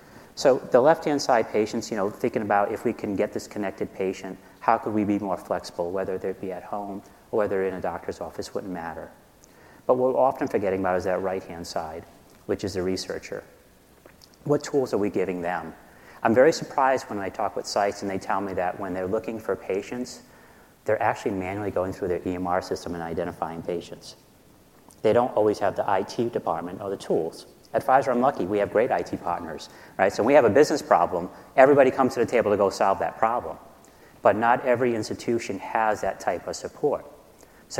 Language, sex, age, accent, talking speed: English, male, 30-49, American, 210 wpm